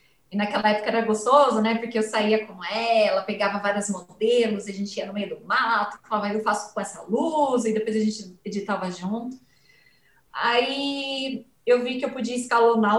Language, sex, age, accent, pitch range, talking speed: Portuguese, female, 20-39, Brazilian, 210-285 Hz, 185 wpm